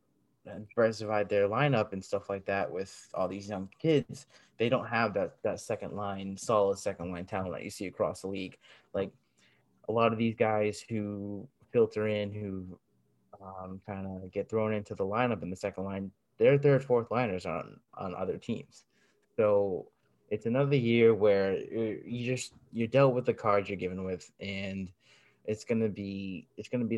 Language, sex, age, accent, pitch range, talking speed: English, male, 20-39, American, 95-110 Hz, 180 wpm